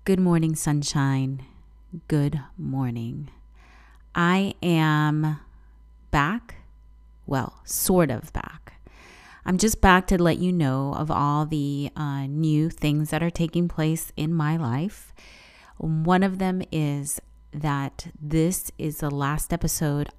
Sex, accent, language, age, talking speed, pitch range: female, American, English, 30-49, 125 wpm, 135-170 Hz